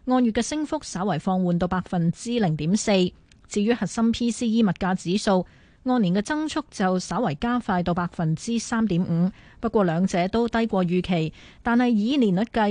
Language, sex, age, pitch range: Chinese, female, 20-39, 180-230 Hz